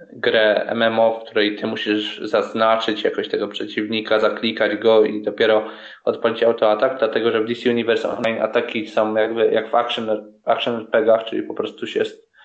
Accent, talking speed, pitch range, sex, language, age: native, 165 wpm, 115-160 Hz, male, Polish, 20-39